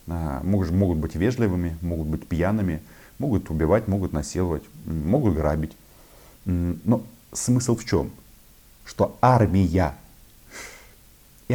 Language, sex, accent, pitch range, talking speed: Russian, male, native, 80-115 Hz, 110 wpm